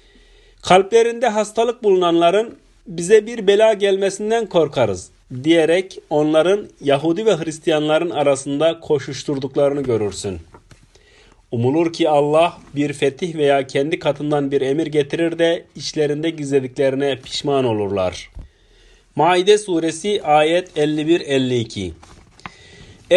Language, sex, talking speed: Turkish, male, 95 wpm